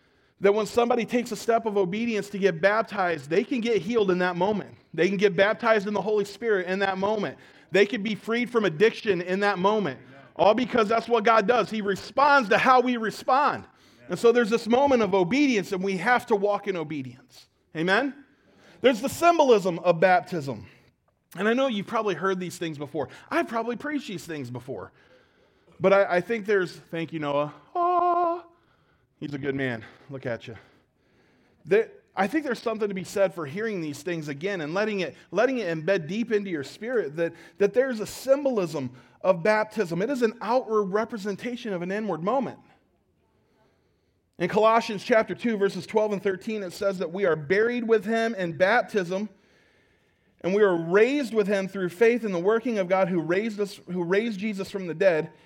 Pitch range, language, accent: 180-230 Hz, English, American